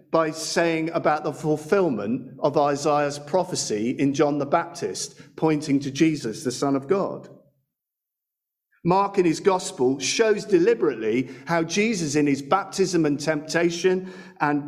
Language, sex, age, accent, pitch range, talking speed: English, male, 50-69, British, 140-215 Hz, 135 wpm